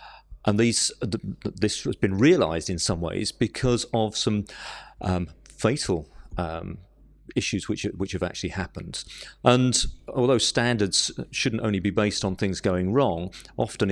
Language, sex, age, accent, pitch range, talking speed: English, male, 40-59, British, 100-125 Hz, 145 wpm